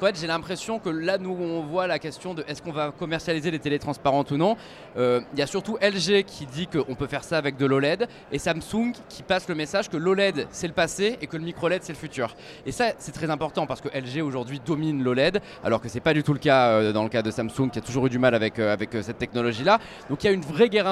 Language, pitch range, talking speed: French, 140-190 Hz, 265 wpm